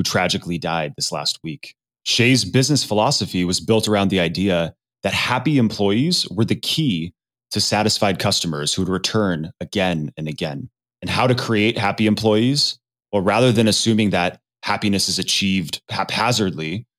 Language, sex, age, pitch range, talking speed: English, male, 30-49, 95-120 Hz, 155 wpm